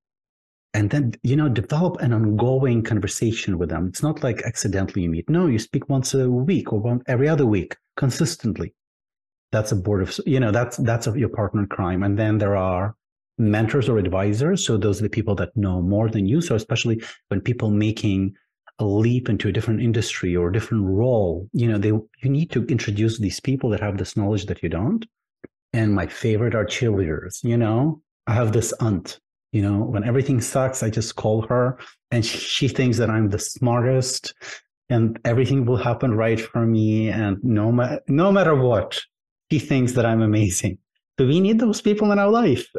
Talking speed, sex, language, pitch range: 195 wpm, male, English, 105-130 Hz